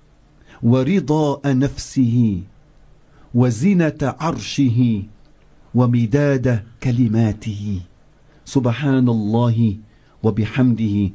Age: 50-69